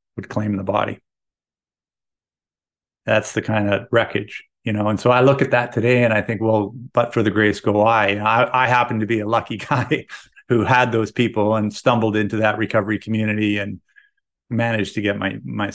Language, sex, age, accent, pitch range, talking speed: English, male, 50-69, American, 105-120 Hz, 200 wpm